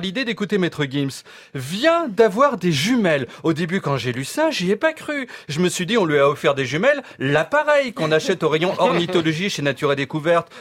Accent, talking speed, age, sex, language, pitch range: French, 225 wpm, 40-59, male, French, 170-265 Hz